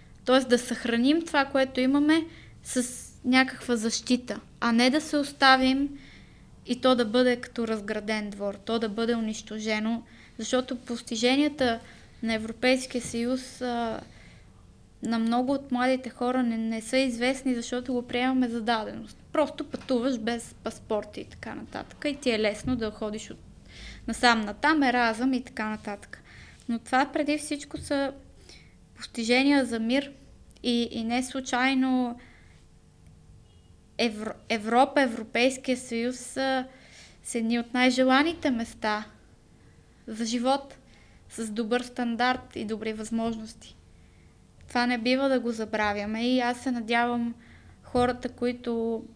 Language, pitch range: Bulgarian, 225-260 Hz